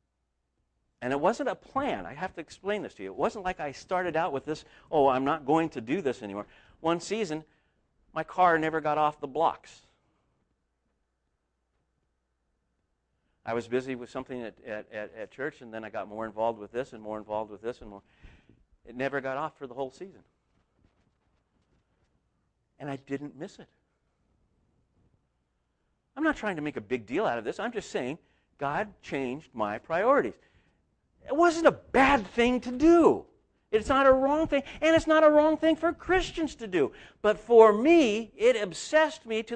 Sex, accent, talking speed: male, American, 185 wpm